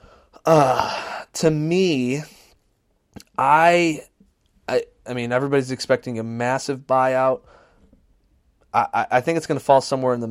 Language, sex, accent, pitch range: English, male, American, 105-125 Hz